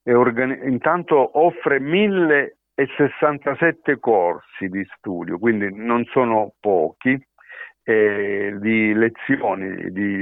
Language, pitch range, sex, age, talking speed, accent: Italian, 100-130 Hz, male, 50-69, 95 wpm, native